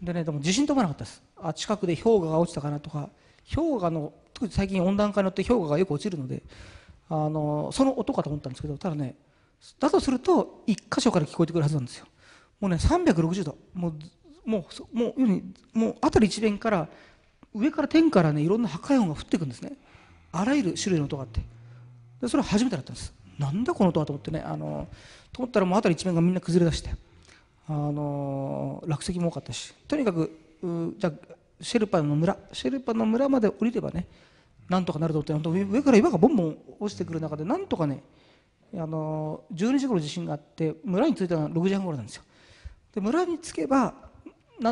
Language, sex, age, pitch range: Japanese, male, 40-59, 150-215 Hz